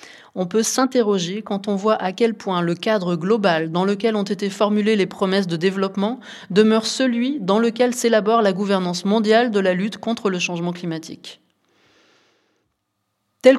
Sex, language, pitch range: female, French, 185-220 Hz